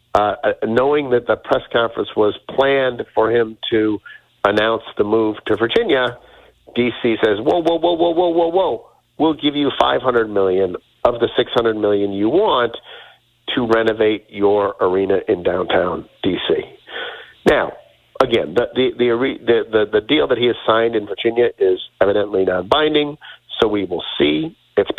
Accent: American